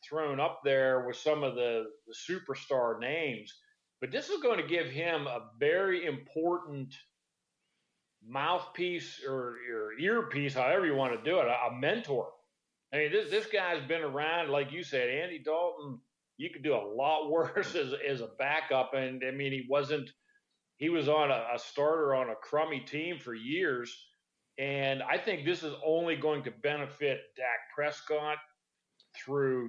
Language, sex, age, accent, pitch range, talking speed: English, male, 40-59, American, 135-175 Hz, 170 wpm